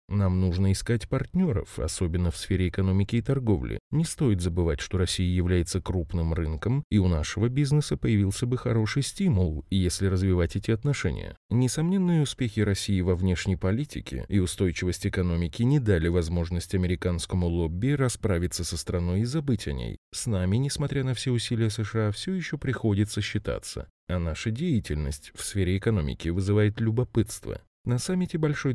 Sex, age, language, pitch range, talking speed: male, 20-39, Russian, 90-120 Hz, 150 wpm